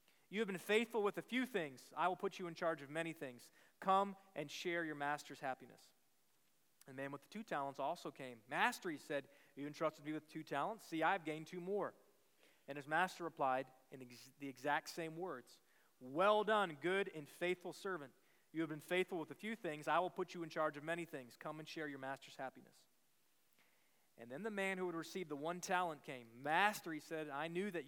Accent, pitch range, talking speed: American, 145-185 Hz, 220 wpm